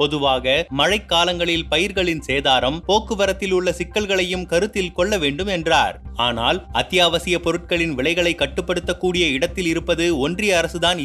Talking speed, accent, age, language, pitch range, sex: 110 wpm, native, 30-49, Tamil, 160-195 Hz, male